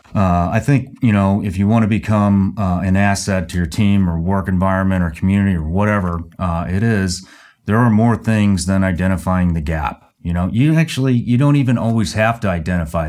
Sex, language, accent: male, English, American